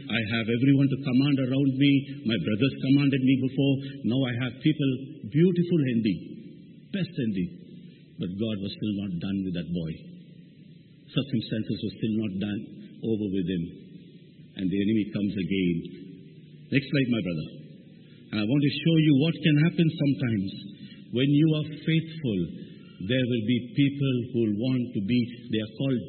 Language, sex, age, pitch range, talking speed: English, male, 60-79, 115-150 Hz, 165 wpm